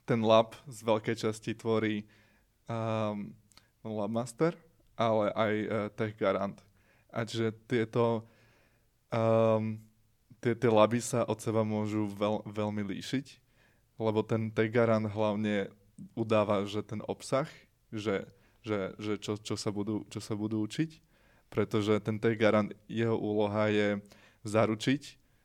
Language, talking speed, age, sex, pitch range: Slovak, 120 wpm, 20-39, male, 105-115 Hz